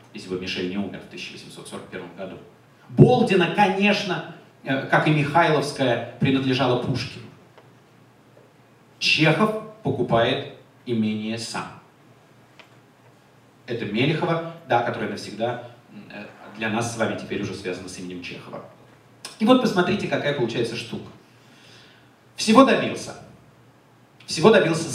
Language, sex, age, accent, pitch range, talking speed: Russian, male, 30-49, native, 120-165 Hz, 105 wpm